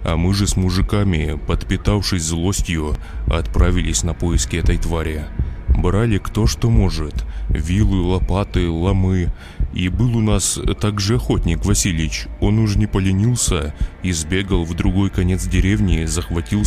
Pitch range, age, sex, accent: 80-95 Hz, 20-39, male, native